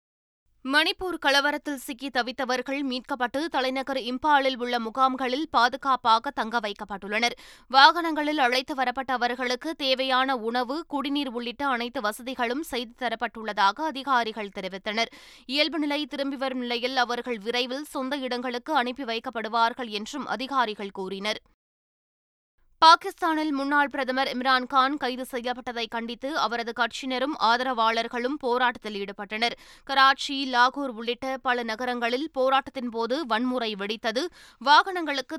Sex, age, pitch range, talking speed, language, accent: female, 20-39, 235-280 Hz, 100 wpm, Tamil, native